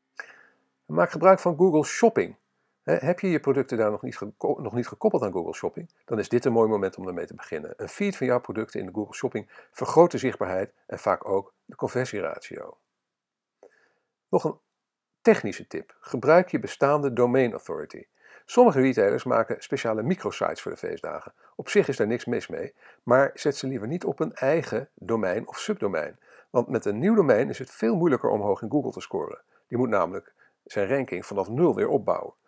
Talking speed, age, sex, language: 195 wpm, 50-69, male, Dutch